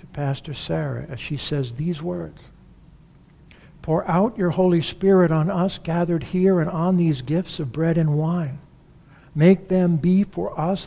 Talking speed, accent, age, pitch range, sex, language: 160 wpm, American, 60-79, 140-170 Hz, male, English